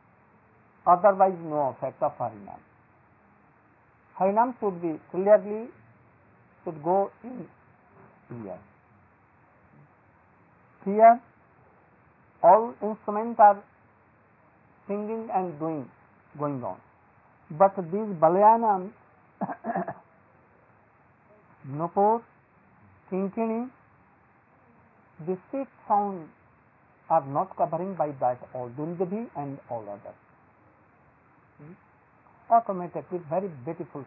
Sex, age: male, 50-69